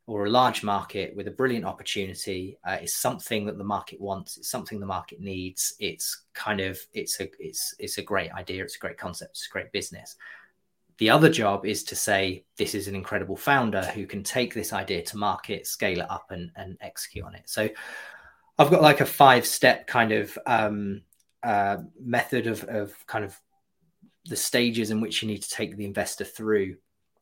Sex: male